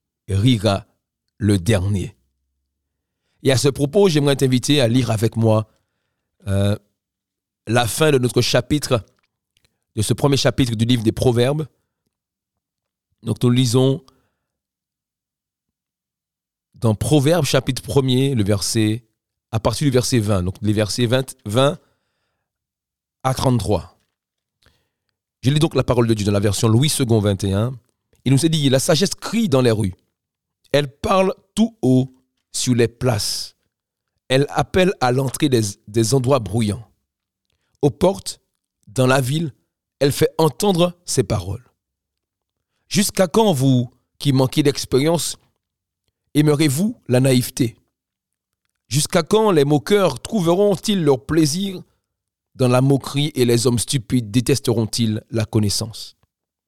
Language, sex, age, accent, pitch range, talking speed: French, male, 40-59, French, 105-140 Hz, 130 wpm